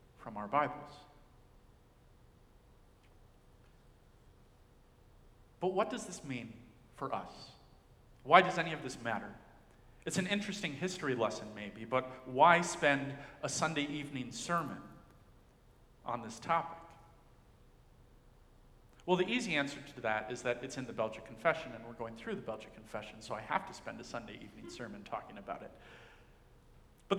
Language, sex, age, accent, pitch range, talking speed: English, male, 40-59, American, 115-170 Hz, 145 wpm